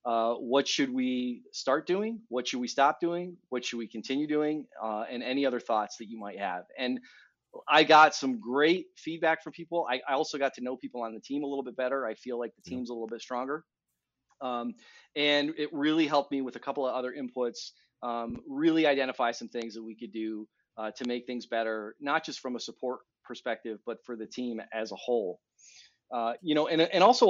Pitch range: 120-145 Hz